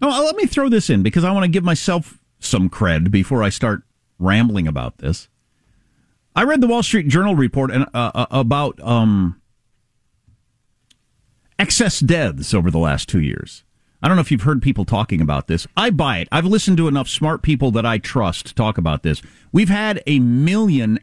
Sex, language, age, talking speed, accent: male, English, 50-69, 195 wpm, American